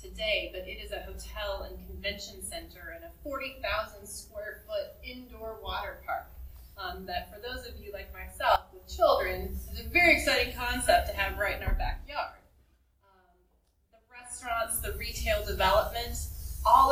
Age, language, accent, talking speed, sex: 20-39, English, American, 160 wpm, female